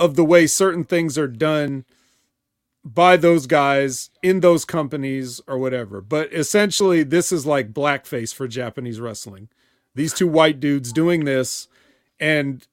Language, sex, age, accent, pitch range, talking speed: English, male, 30-49, American, 135-175 Hz, 145 wpm